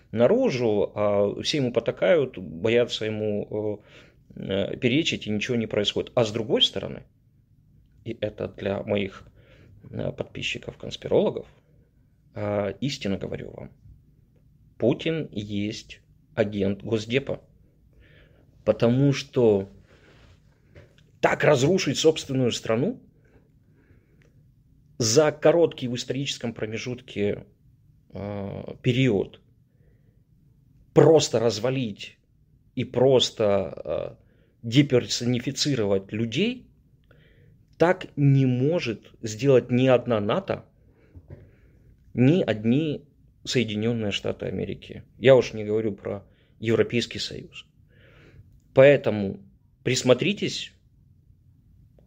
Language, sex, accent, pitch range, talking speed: Ukrainian, male, native, 105-135 Hz, 75 wpm